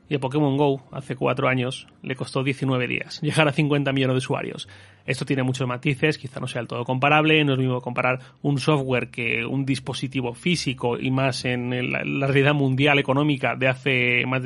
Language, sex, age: Spanish, male, 30-49